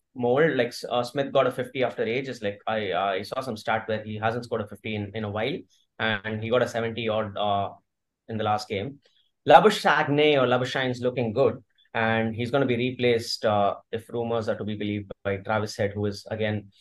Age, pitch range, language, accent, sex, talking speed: 20-39, 105-130 Hz, English, Indian, male, 220 wpm